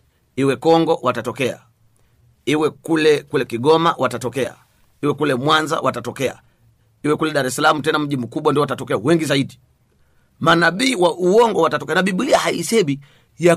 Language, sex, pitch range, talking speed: Swahili, male, 125-155 Hz, 135 wpm